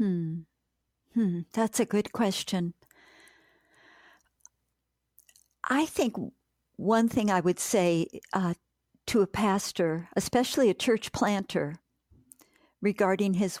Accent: American